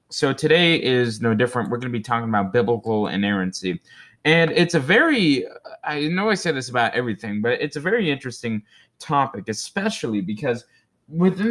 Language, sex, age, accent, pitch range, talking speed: English, male, 20-39, American, 105-140 Hz, 175 wpm